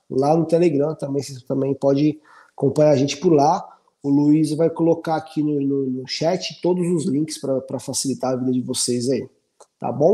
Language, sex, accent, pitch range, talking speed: Portuguese, male, Brazilian, 130-175 Hz, 195 wpm